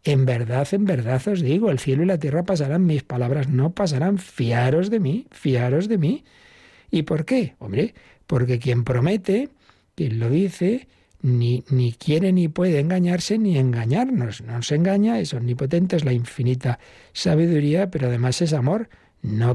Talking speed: 165 wpm